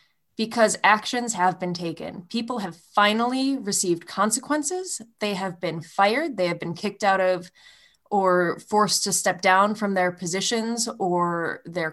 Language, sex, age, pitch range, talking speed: English, female, 20-39, 180-215 Hz, 150 wpm